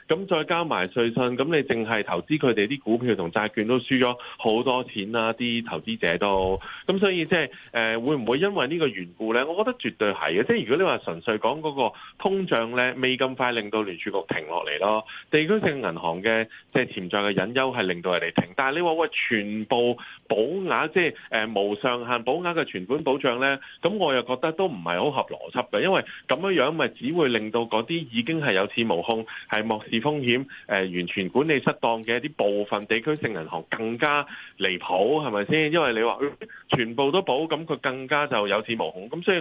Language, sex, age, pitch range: Chinese, male, 30-49, 110-155 Hz